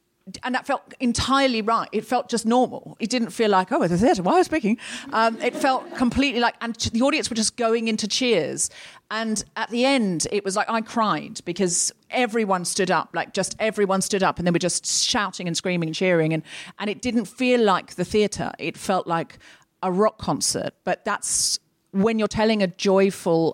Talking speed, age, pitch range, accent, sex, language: 205 wpm, 40-59, 165-220 Hz, British, female, English